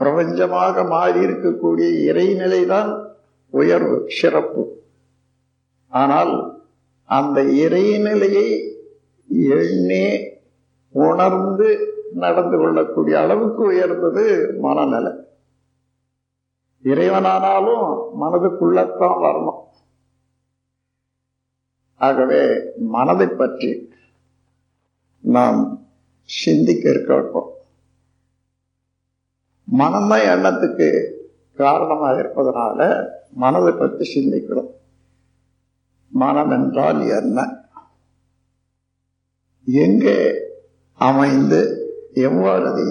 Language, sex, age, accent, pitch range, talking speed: Tamil, male, 50-69, native, 125-190 Hz, 50 wpm